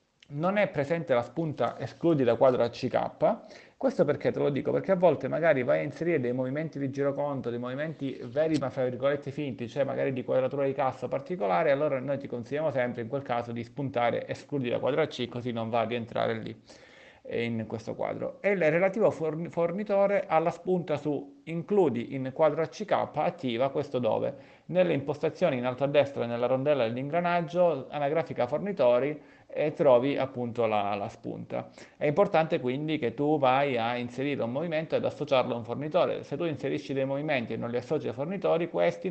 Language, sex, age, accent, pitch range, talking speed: Italian, male, 30-49, native, 125-165 Hz, 185 wpm